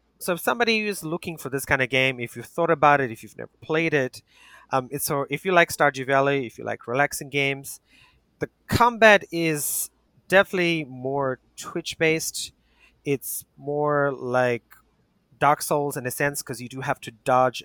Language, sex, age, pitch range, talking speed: English, male, 30-49, 125-160 Hz, 180 wpm